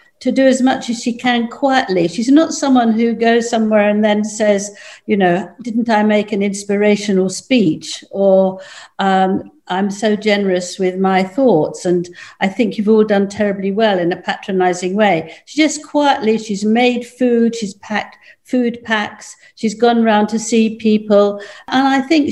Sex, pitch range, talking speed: female, 195-245 Hz, 170 wpm